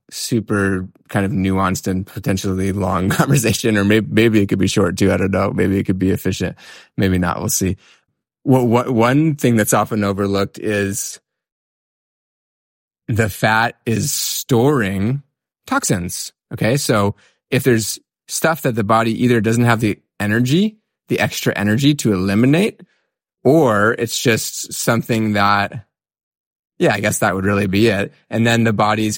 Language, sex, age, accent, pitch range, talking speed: English, male, 20-39, American, 95-120 Hz, 155 wpm